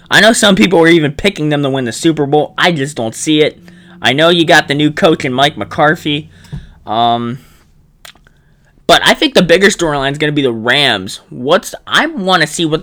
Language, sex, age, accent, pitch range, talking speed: English, male, 20-39, American, 125-150 Hz, 220 wpm